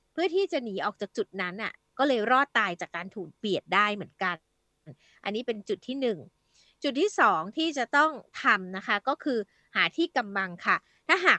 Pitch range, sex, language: 205-285 Hz, female, Thai